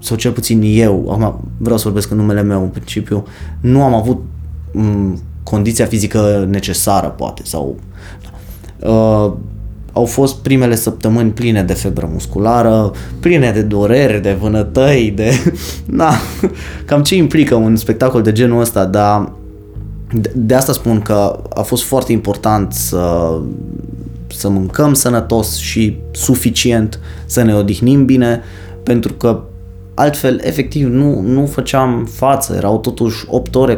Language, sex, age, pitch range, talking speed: Romanian, male, 20-39, 95-120 Hz, 135 wpm